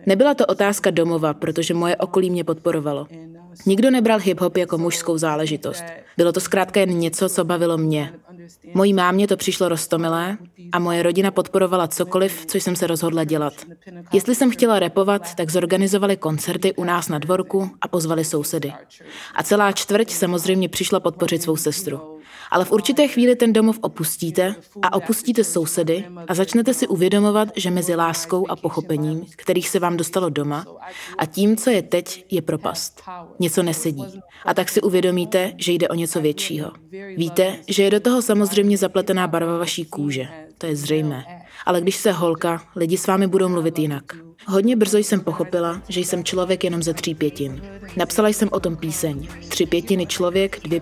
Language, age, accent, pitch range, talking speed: Czech, 20-39, native, 165-195 Hz, 170 wpm